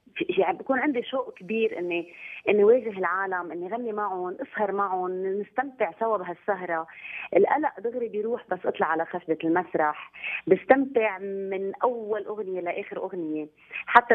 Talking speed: 135 wpm